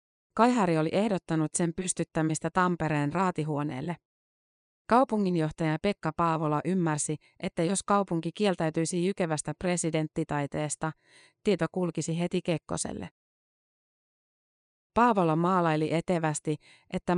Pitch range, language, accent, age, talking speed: 155-185 Hz, Finnish, native, 30-49, 85 wpm